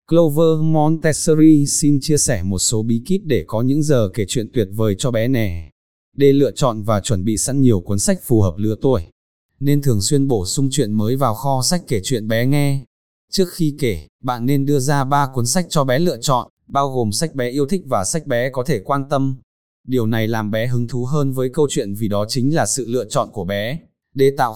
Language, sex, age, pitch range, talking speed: Vietnamese, male, 20-39, 110-145 Hz, 235 wpm